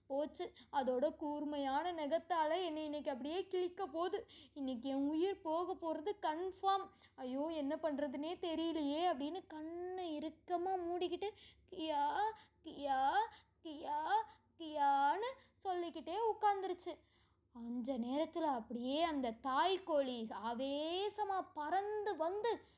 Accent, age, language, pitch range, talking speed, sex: native, 20-39, Tamil, 275-370 Hz, 95 wpm, female